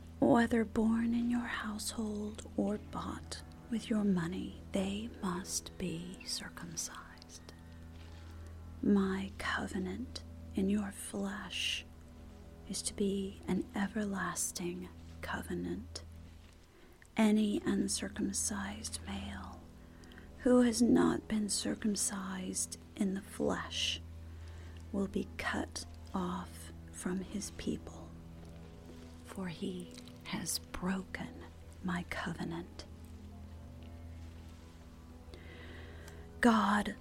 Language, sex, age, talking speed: English, female, 40-59, 80 wpm